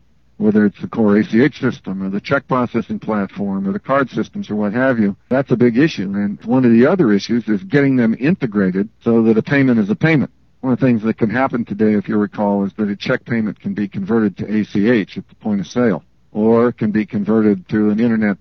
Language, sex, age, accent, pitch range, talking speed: English, male, 60-79, American, 105-130 Hz, 240 wpm